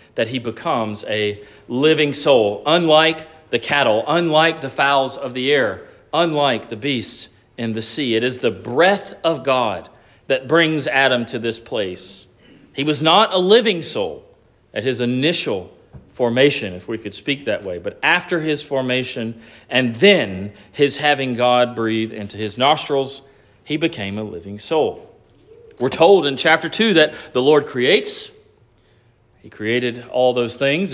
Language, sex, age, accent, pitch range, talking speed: English, male, 40-59, American, 115-160 Hz, 155 wpm